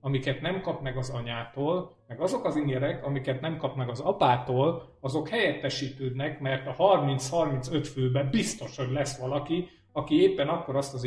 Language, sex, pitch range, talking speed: Hungarian, male, 120-145 Hz, 170 wpm